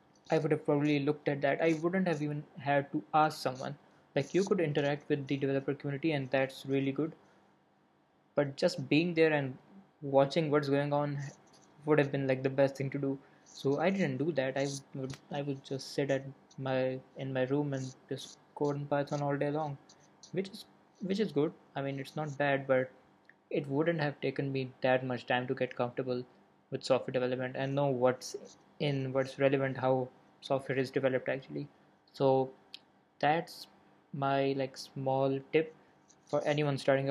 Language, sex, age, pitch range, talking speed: Urdu, male, 20-39, 135-150 Hz, 185 wpm